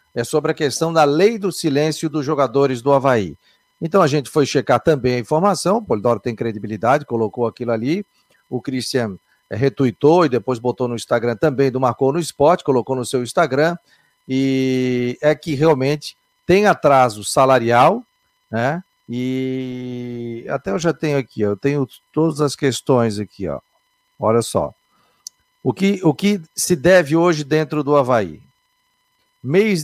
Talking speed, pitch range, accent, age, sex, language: 160 wpm, 125-180 Hz, Brazilian, 50-69, male, Portuguese